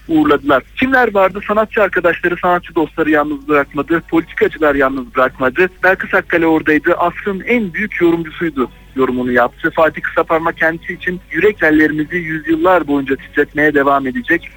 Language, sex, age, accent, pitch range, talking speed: Turkish, male, 60-79, native, 140-175 Hz, 130 wpm